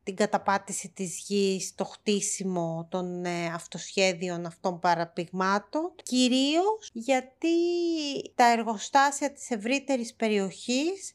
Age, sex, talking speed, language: 30-49, female, 95 wpm, Greek